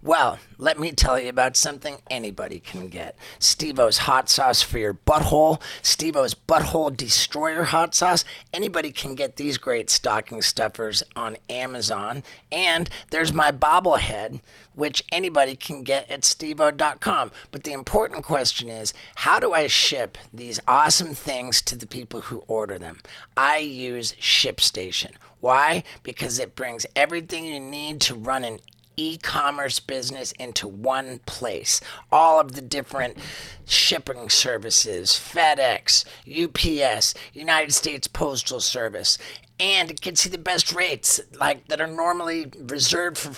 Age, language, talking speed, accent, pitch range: 40-59, English, 140 wpm, American, 125-160 Hz